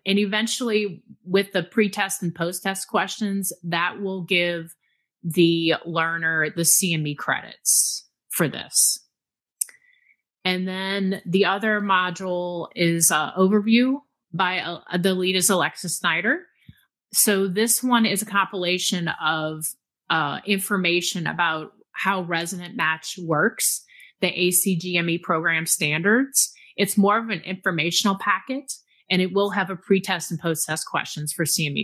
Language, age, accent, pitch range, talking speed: English, 30-49, American, 170-205 Hz, 130 wpm